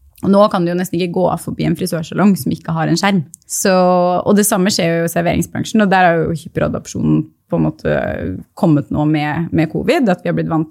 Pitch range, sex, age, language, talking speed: 165-200 Hz, female, 20-39, English, 220 wpm